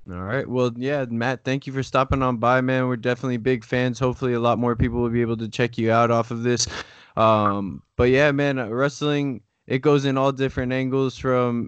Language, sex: English, male